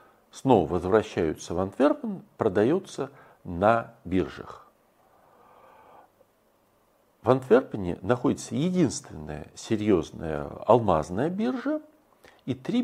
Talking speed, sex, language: 75 wpm, male, Russian